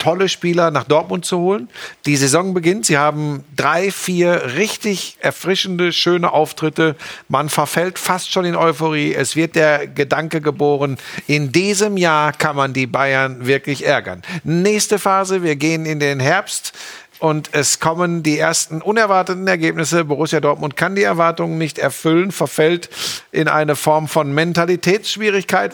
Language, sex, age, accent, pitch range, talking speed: German, male, 50-69, German, 145-175 Hz, 150 wpm